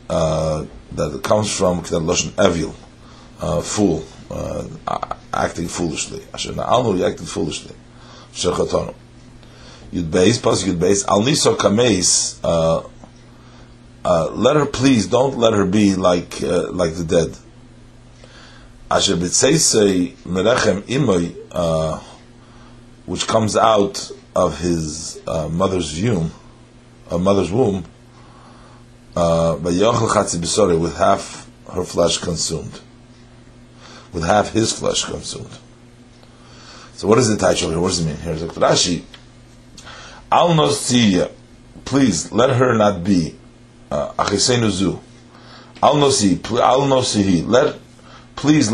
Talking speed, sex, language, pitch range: 115 wpm, male, English, 85-120 Hz